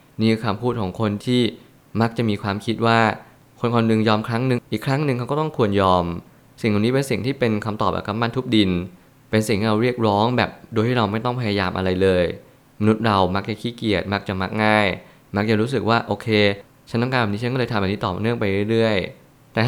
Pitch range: 105-120 Hz